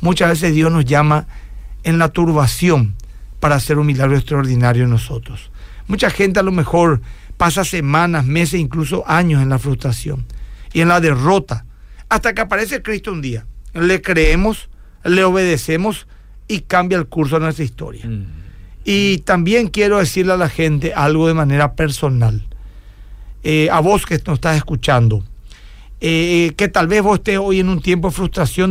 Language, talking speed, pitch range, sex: Spanish, 165 wpm, 140-185 Hz, male